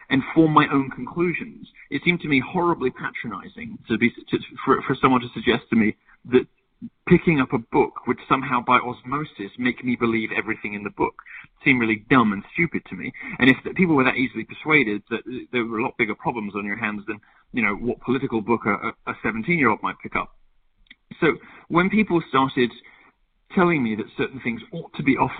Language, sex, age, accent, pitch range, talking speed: English, male, 40-59, British, 110-150 Hz, 195 wpm